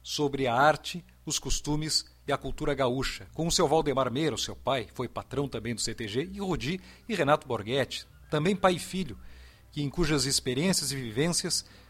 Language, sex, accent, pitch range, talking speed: Portuguese, male, Brazilian, 115-165 Hz, 185 wpm